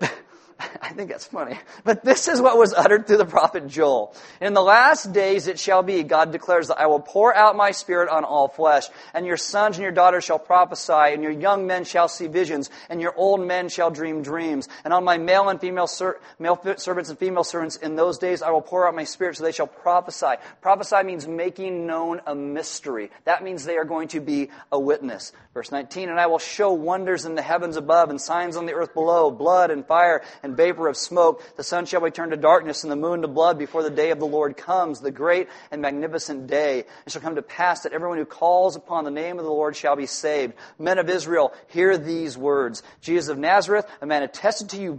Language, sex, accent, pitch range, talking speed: English, male, American, 155-185 Hz, 235 wpm